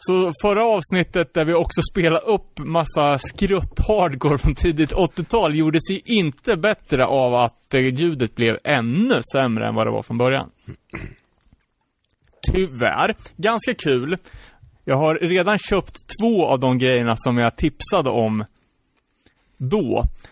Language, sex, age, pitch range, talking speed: Swedish, male, 30-49, 130-180 Hz, 135 wpm